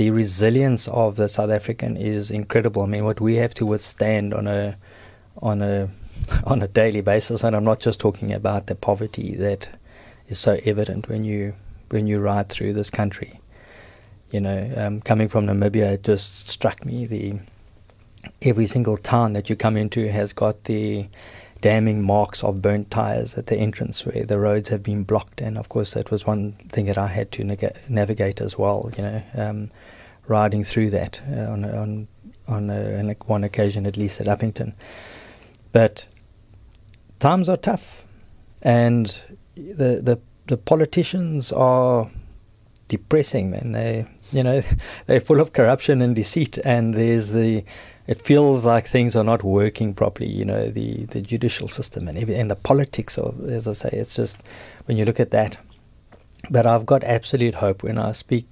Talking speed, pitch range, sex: 175 wpm, 105-115 Hz, male